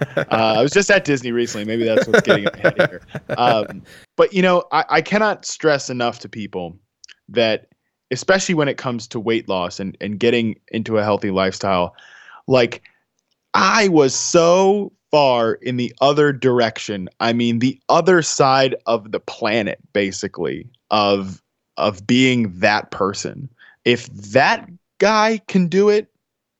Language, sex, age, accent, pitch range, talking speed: English, male, 20-39, American, 105-135 Hz, 160 wpm